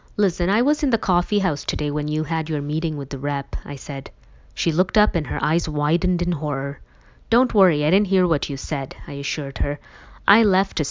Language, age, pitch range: English, 20-39, 150-205 Hz